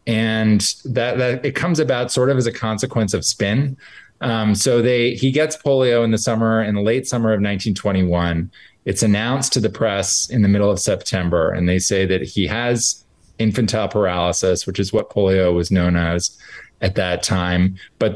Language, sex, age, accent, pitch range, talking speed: English, male, 20-39, American, 100-125 Hz, 190 wpm